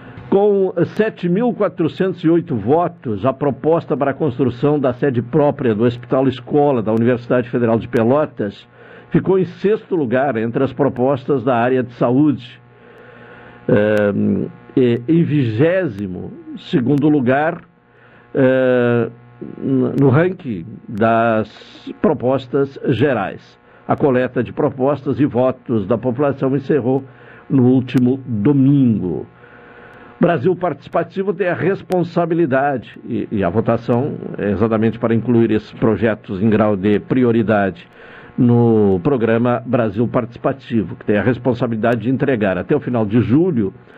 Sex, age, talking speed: male, 60-79, 115 wpm